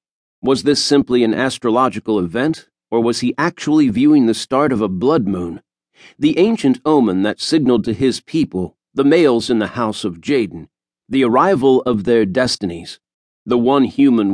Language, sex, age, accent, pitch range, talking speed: English, male, 50-69, American, 105-135 Hz, 165 wpm